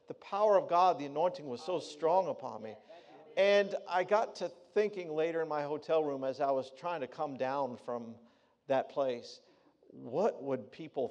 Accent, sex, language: American, male, English